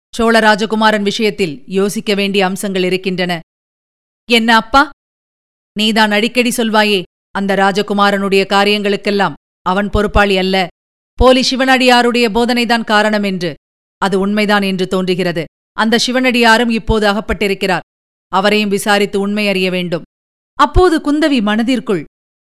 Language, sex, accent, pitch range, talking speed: Tamil, female, native, 200-265 Hz, 105 wpm